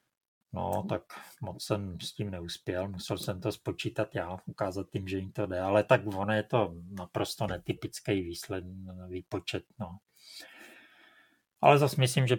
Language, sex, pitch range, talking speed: Czech, male, 100-125 Hz, 155 wpm